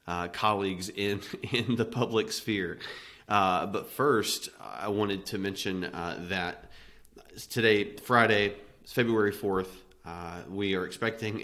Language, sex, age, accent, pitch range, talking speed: English, male, 30-49, American, 85-105 Hz, 125 wpm